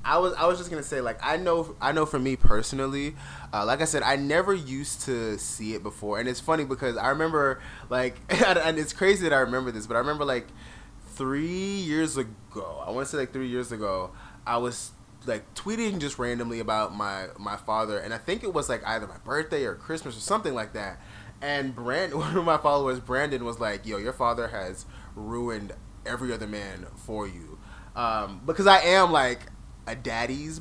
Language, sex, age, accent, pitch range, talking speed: English, male, 20-39, American, 110-160 Hz, 210 wpm